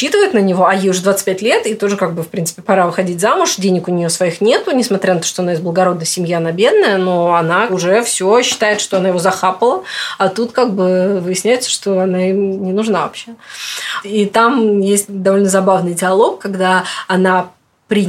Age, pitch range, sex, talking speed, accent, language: 20-39, 175-205 Hz, female, 200 wpm, native, Russian